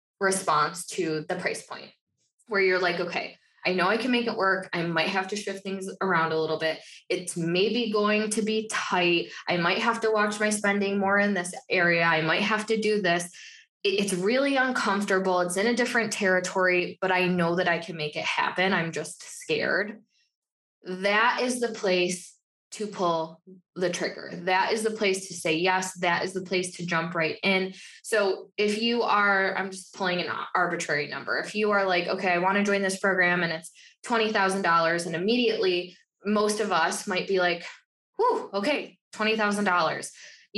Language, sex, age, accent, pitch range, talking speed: English, female, 20-39, American, 175-215 Hz, 190 wpm